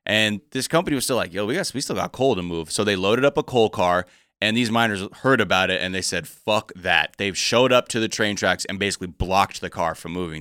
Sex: male